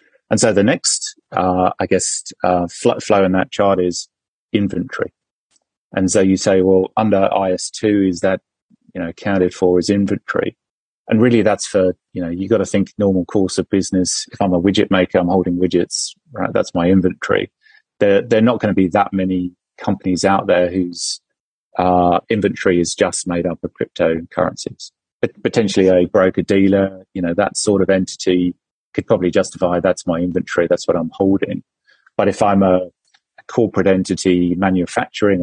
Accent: British